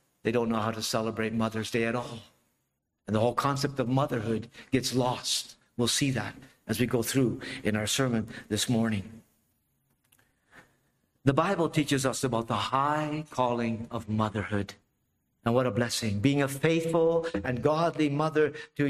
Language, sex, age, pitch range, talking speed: English, male, 50-69, 125-170 Hz, 160 wpm